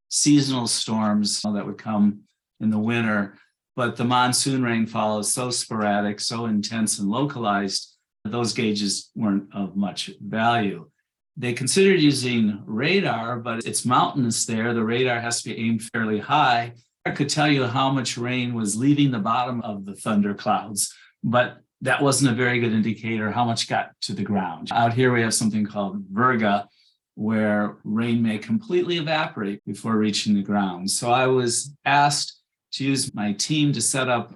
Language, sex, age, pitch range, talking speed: English, male, 50-69, 105-125 Hz, 170 wpm